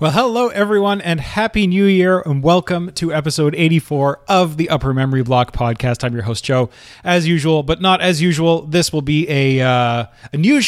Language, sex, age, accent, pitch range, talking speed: English, male, 30-49, American, 120-160 Hz, 195 wpm